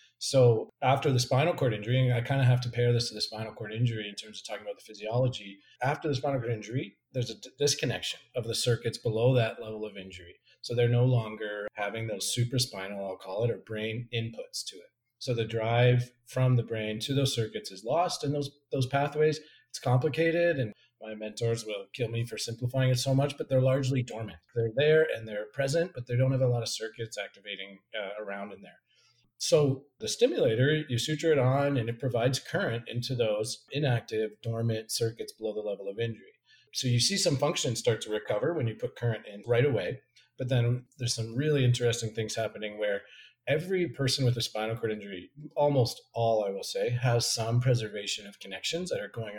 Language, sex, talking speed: English, male, 210 wpm